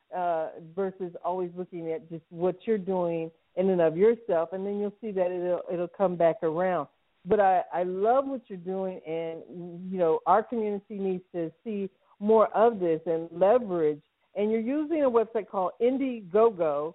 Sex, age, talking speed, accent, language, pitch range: female, 50-69, 175 wpm, American, English, 170-215 Hz